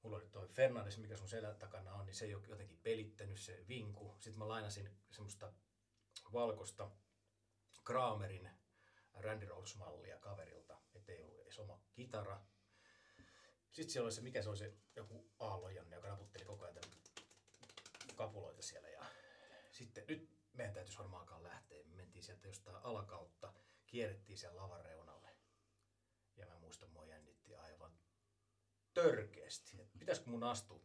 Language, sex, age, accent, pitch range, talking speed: Finnish, male, 30-49, native, 100-110 Hz, 140 wpm